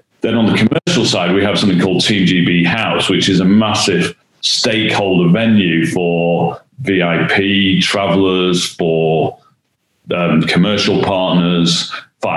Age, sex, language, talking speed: 40-59, male, English, 120 wpm